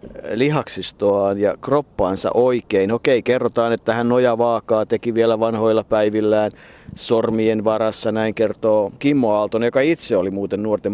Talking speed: 135 wpm